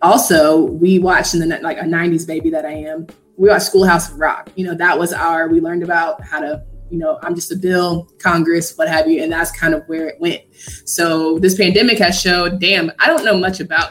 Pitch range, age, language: 165-210 Hz, 20-39, English